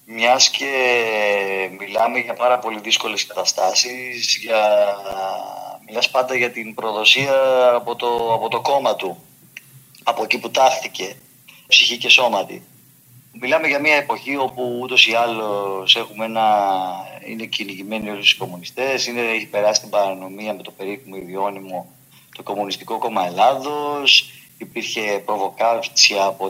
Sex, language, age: male, Greek, 30-49